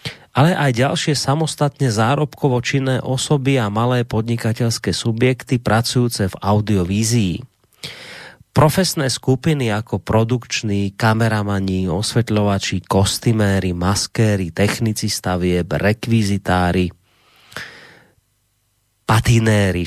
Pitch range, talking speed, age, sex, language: 100-130 Hz, 80 wpm, 30-49, male, Slovak